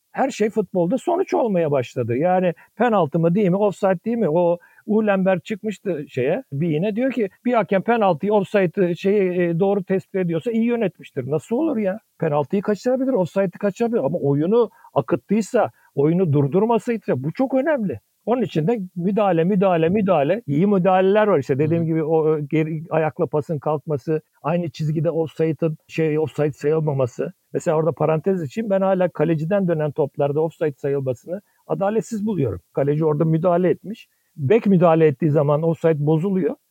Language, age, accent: Turkish, 60-79, native